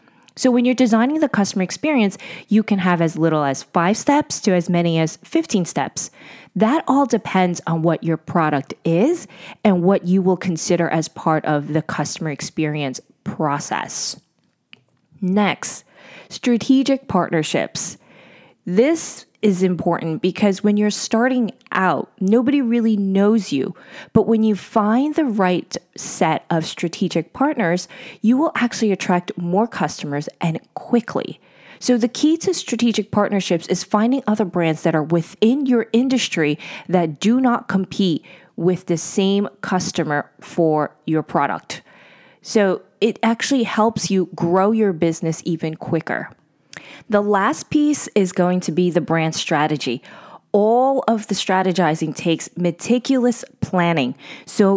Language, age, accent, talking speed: English, 20-39, American, 140 wpm